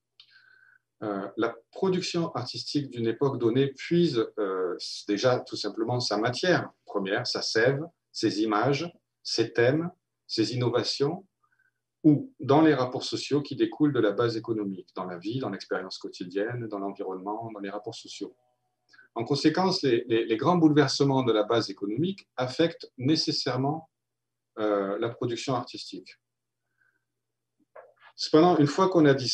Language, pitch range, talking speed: French, 115-160 Hz, 140 wpm